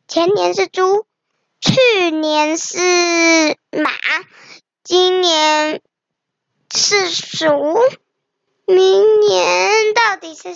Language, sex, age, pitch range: Chinese, male, 10-29, 295-380 Hz